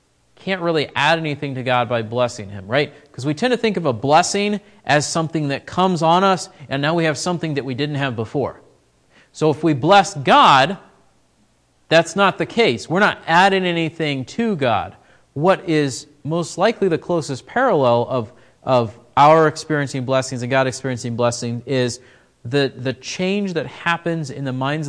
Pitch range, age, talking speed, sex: 130-165 Hz, 40-59, 180 wpm, male